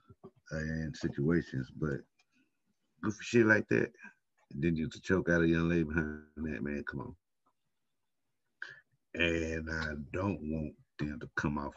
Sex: male